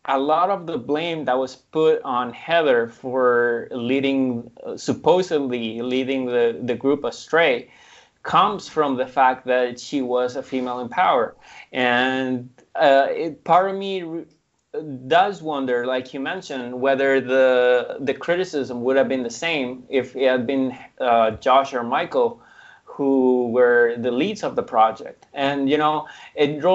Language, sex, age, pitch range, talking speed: English, male, 20-39, 125-155 Hz, 155 wpm